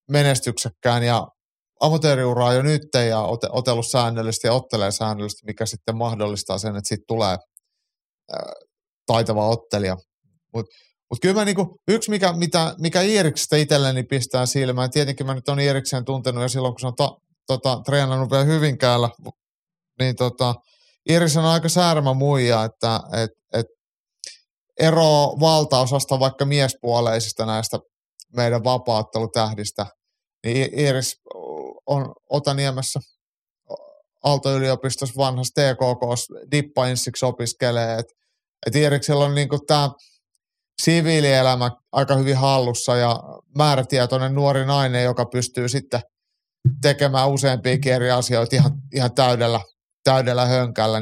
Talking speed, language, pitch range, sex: 120 wpm, Finnish, 120-145 Hz, male